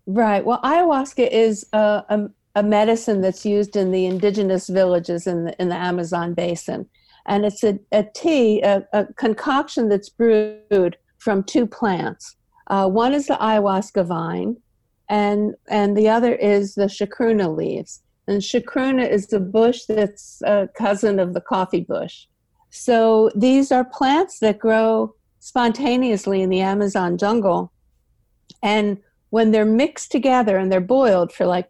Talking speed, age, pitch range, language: 150 wpm, 50-69, 190-225 Hz, English